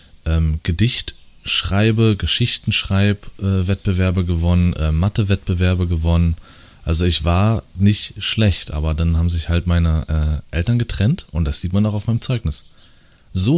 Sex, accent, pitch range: male, German, 80-100 Hz